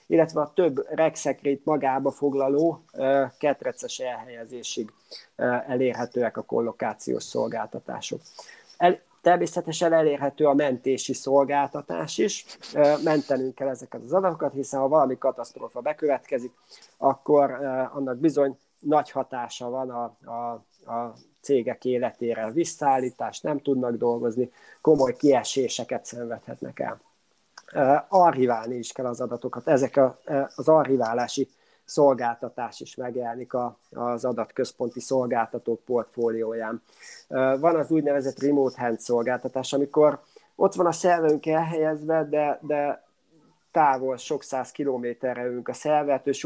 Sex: male